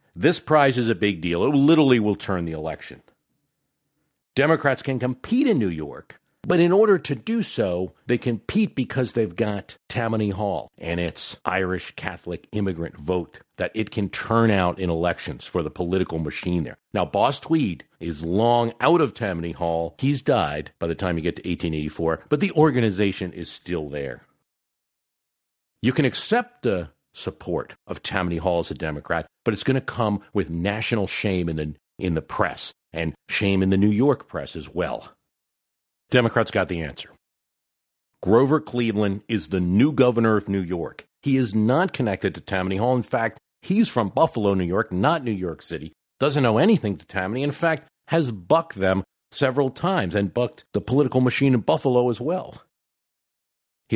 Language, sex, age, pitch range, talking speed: English, male, 50-69, 90-130 Hz, 175 wpm